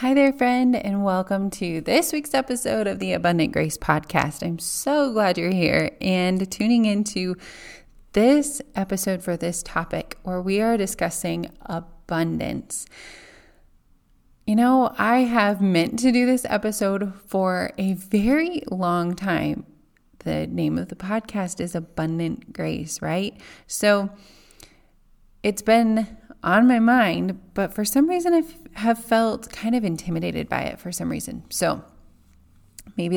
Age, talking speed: 20-39, 140 wpm